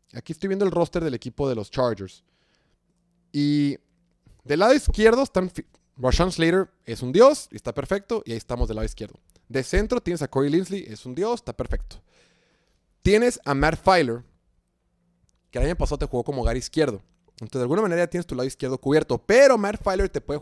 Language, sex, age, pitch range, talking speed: Spanish, male, 30-49, 120-170 Hz, 195 wpm